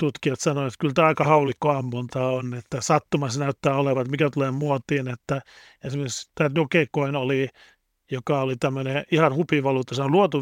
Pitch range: 135-155 Hz